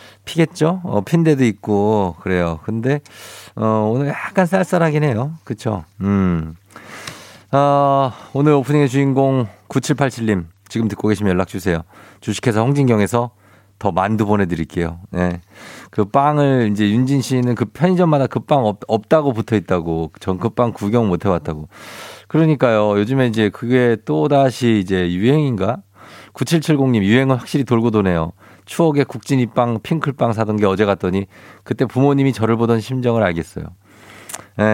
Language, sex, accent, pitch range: Korean, male, native, 100-140 Hz